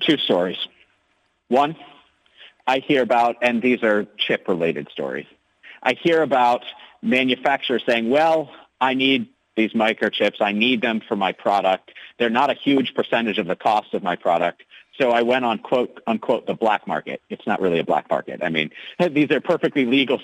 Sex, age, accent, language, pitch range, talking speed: male, 50-69, American, English, 115-155 Hz, 180 wpm